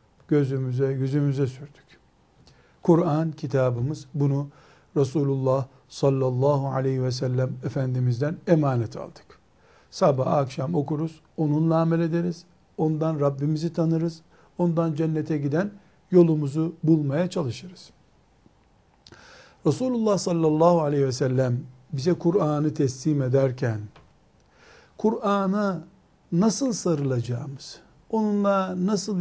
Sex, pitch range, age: male, 140-180 Hz, 60-79